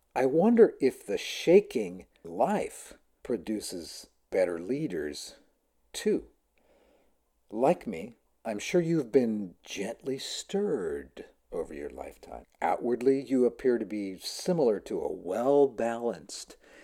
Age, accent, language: 50-69, American, English